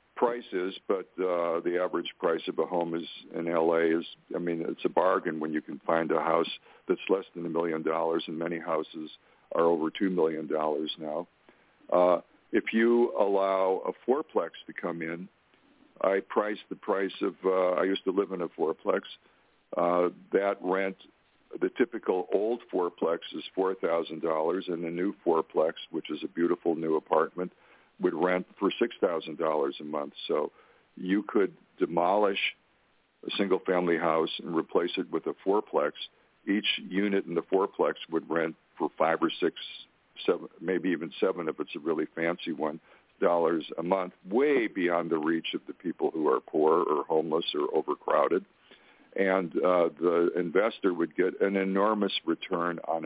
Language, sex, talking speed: English, male, 170 wpm